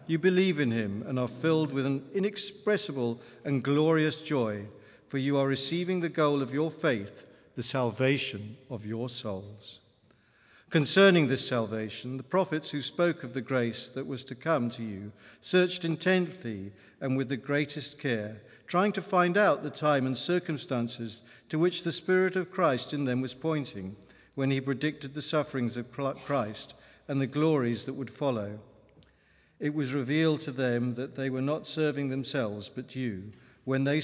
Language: English